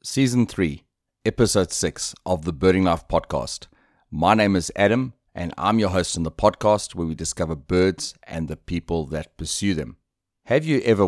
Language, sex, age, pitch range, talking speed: English, male, 30-49, 85-105 Hz, 180 wpm